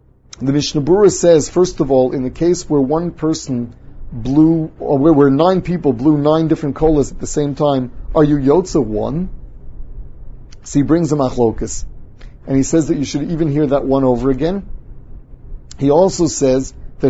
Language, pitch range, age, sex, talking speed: English, 130-160 Hz, 30-49, male, 180 wpm